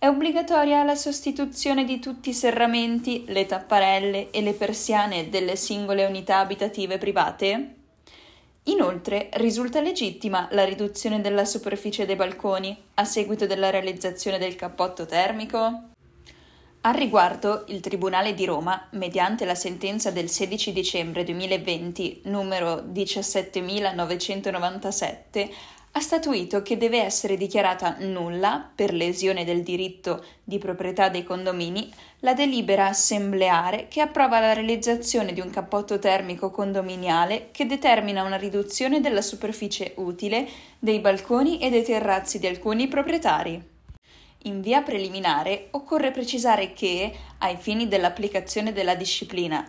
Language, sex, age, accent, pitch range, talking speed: Italian, female, 10-29, native, 185-230 Hz, 125 wpm